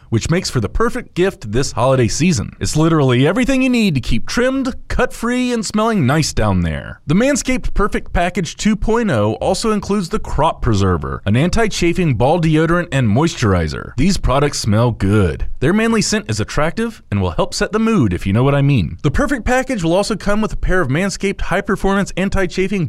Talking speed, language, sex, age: 195 wpm, English, male, 30-49